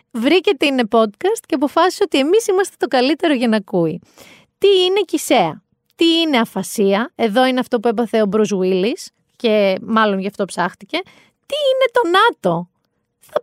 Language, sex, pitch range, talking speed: Greek, female, 205-320 Hz, 165 wpm